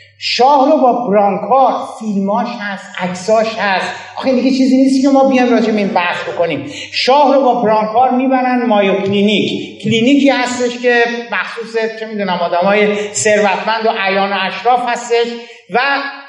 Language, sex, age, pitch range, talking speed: Persian, male, 50-69, 200-260 Hz, 145 wpm